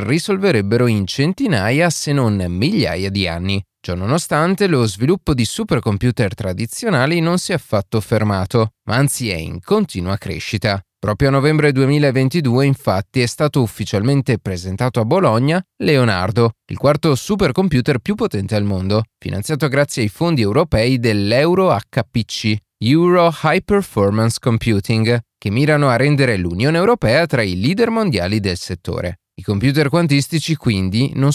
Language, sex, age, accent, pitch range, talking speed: Italian, male, 30-49, native, 110-155 Hz, 135 wpm